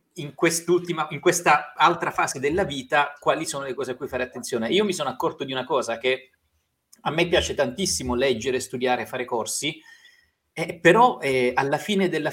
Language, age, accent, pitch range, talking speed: Italian, 30-49, native, 120-165 Hz, 185 wpm